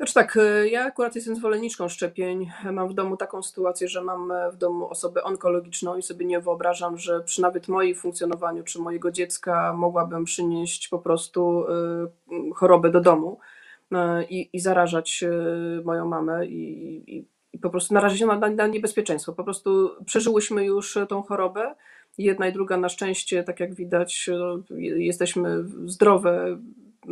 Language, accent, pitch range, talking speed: Polish, native, 165-185 Hz, 150 wpm